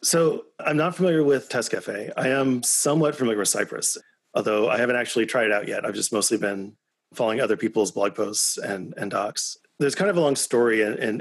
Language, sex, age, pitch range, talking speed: English, male, 30-49, 105-140 Hz, 215 wpm